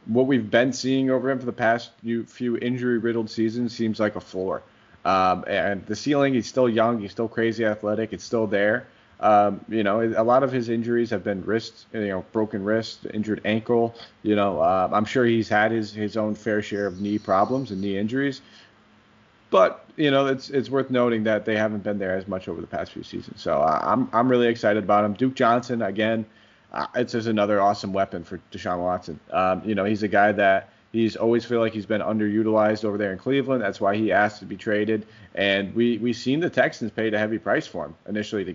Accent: American